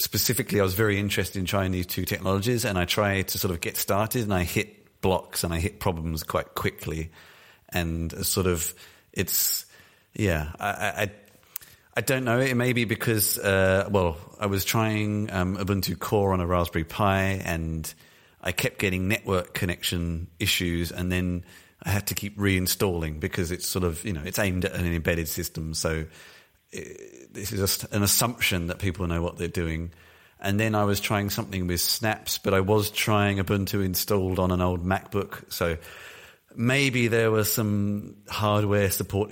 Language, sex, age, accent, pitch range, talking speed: English, male, 30-49, British, 90-105 Hz, 180 wpm